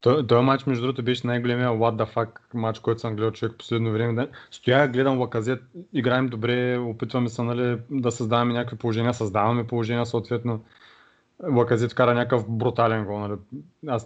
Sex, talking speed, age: male, 165 wpm, 20-39